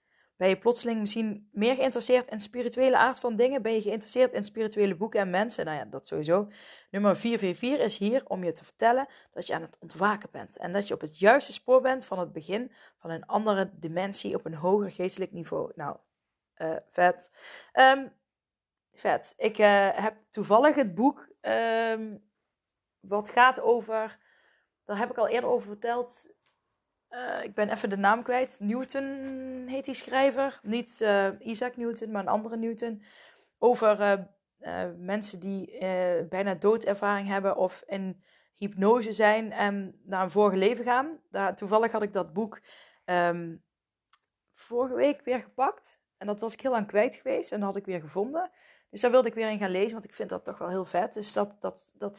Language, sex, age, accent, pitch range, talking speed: Dutch, female, 20-39, Dutch, 195-245 Hz, 185 wpm